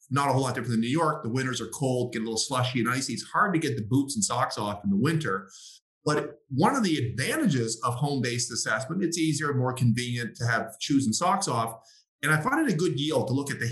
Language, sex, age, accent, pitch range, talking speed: English, male, 30-49, American, 120-155 Hz, 260 wpm